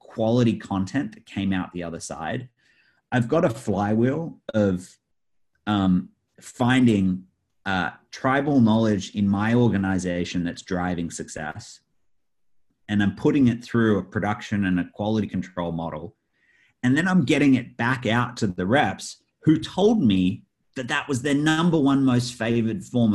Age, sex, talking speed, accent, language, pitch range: 30-49, male, 150 wpm, Australian, English, 95-125 Hz